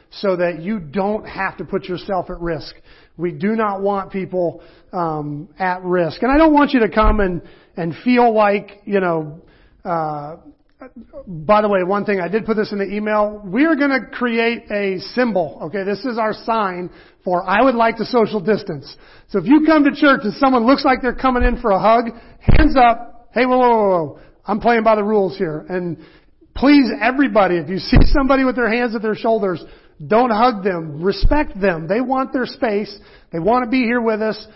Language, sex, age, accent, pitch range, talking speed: English, male, 40-59, American, 185-240 Hz, 210 wpm